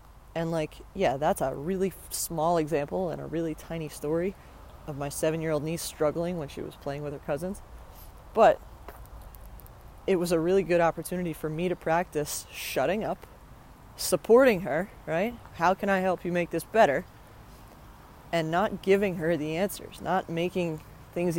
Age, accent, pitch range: 20-39, American, 150-190 Hz